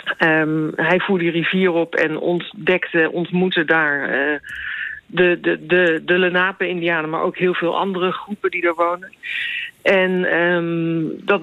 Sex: female